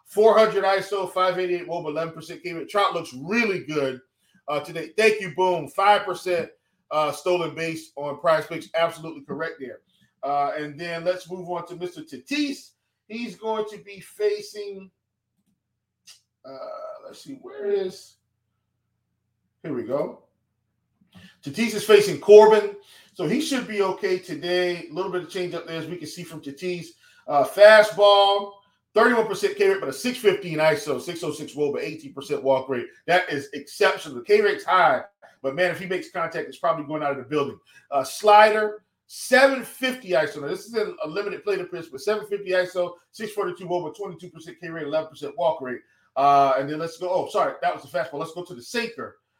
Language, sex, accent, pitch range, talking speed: English, male, American, 160-215 Hz, 175 wpm